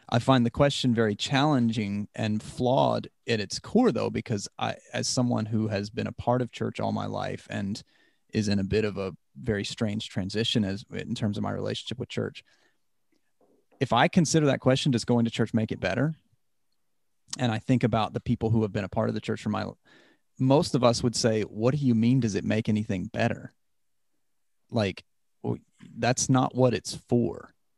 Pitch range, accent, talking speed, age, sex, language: 105-125 Hz, American, 200 wpm, 30-49, male, English